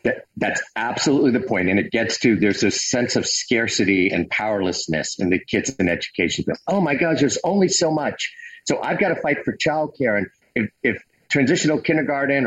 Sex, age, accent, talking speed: male, 50-69, American, 195 wpm